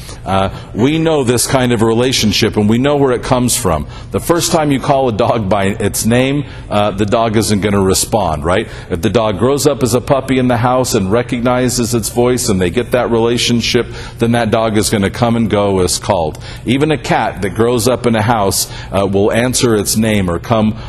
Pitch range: 110-135 Hz